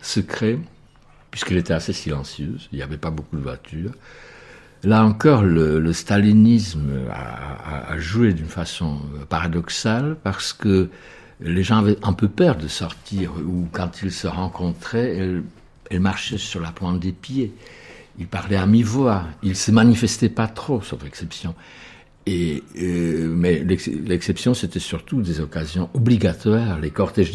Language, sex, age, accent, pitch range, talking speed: French, male, 60-79, French, 85-110 Hz, 150 wpm